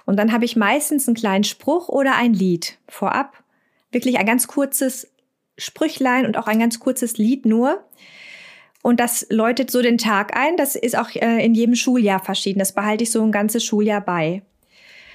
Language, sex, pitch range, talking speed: German, female, 205-240 Hz, 180 wpm